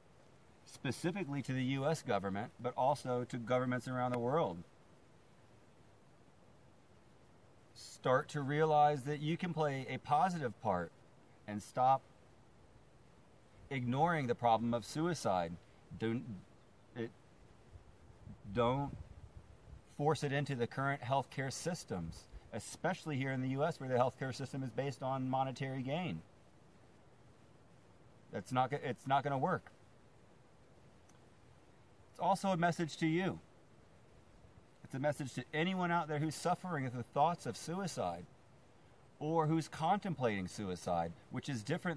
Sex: male